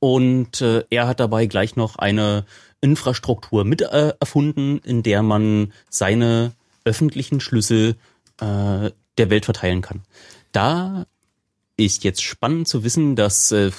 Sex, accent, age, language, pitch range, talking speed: male, German, 30-49, German, 100-125 Hz, 135 wpm